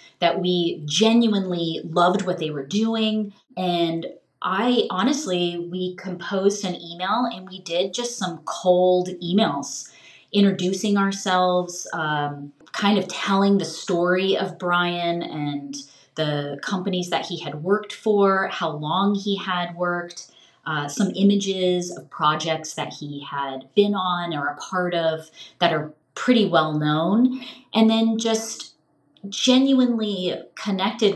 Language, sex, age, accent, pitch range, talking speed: English, female, 30-49, American, 155-200 Hz, 135 wpm